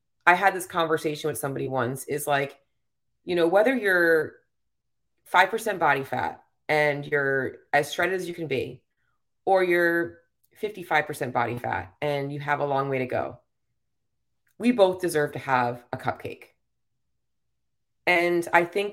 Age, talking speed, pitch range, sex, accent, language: 30-49, 150 wpm, 145-180 Hz, female, American, English